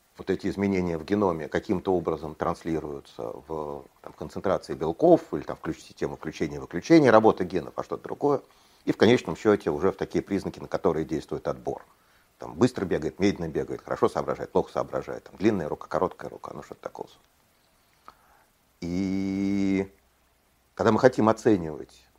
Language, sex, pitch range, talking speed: Russian, male, 85-115 Hz, 150 wpm